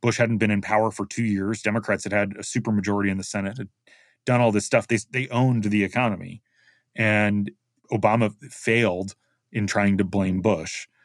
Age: 30-49